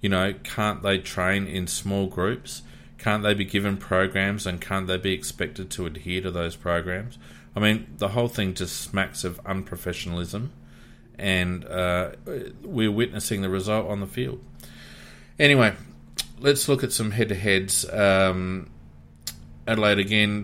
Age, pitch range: 30-49, 85-105 Hz